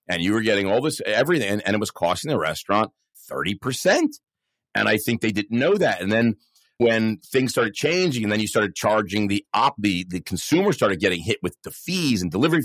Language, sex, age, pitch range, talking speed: English, male, 40-59, 105-145 Hz, 225 wpm